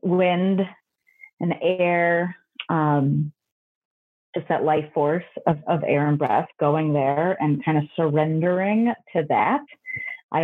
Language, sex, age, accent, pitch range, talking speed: English, female, 30-49, American, 150-195 Hz, 125 wpm